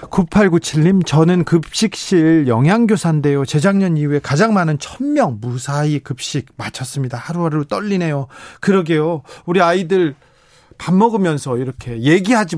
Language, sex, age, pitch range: Korean, male, 40-59, 130-175 Hz